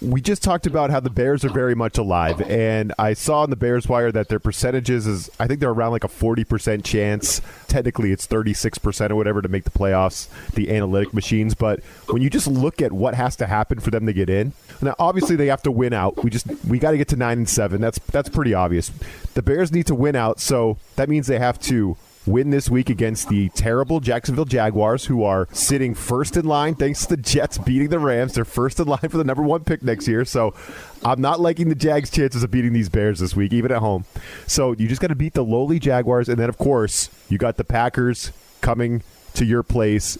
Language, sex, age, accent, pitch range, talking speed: English, male, 30-49, American, 105-135 Hz, 240 wpm